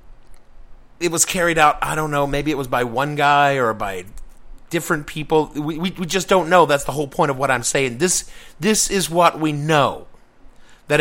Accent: American